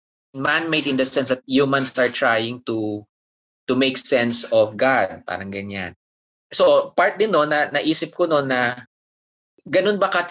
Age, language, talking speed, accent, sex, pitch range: 20-39, Filipino, 165 wpm, native, male, 105-140 Hz